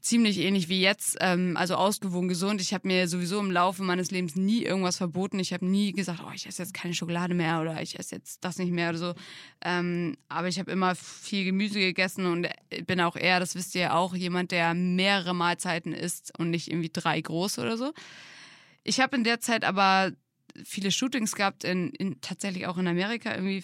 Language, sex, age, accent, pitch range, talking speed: German, female, 20-39, German, 175-205 Hz, 210 wpm